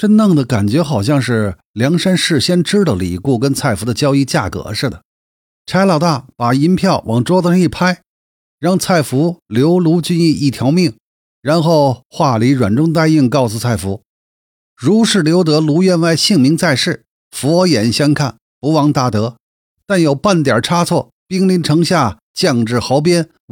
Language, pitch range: Chinese, 120-170 Hz